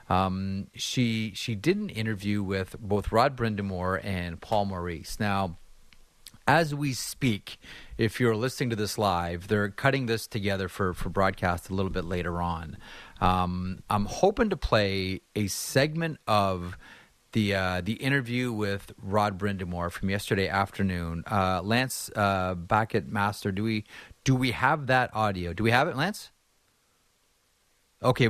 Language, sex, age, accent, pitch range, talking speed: English, male, 30-49, American, 95-130 Hz, 155 wpm